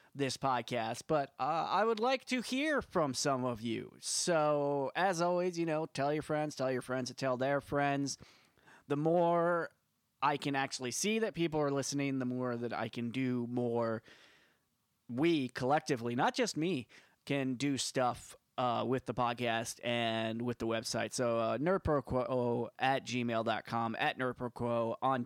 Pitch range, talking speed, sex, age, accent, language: 125-175 Hz, 165 wpm, male, 20-39, American, English